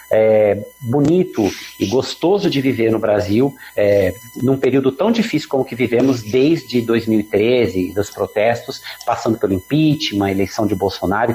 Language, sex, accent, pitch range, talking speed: Portuguese, male, Brazilian, 105-130 Hz, 140 wpm